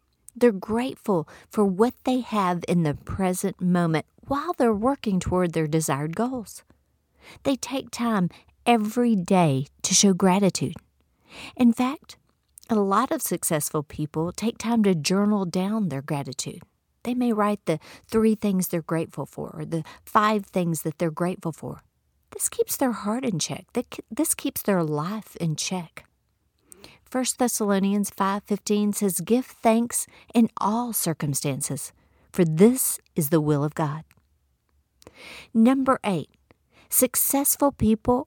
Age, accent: 50-69, American